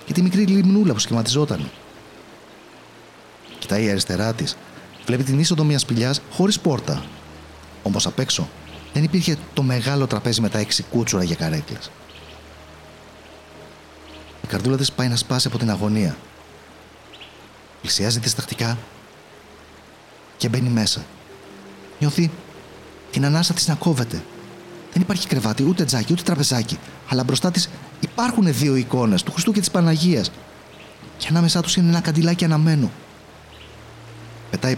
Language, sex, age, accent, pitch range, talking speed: Greek, male, 30-49, native, 100-160 Hz, 135 wpm